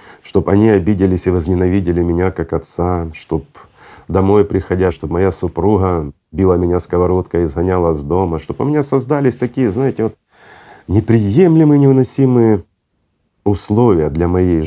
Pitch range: 80-115 Hz